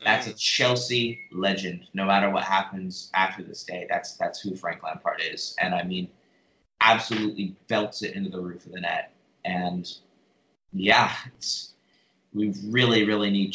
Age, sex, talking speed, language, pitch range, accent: 20-39, male, 160 wpm, English, 95-110 Hz, American